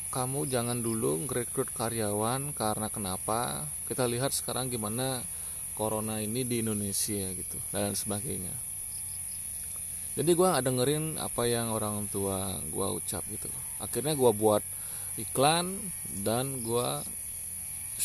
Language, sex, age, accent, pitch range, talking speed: Indonesian, male, 20-39, native, 95-125 Hz, 115 wpm